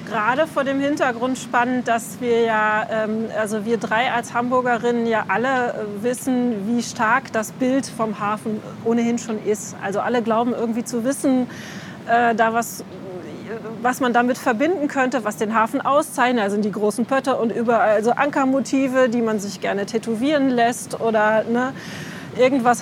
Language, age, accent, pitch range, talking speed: German, 30-49, German, 220-265 Hz, 160 wpm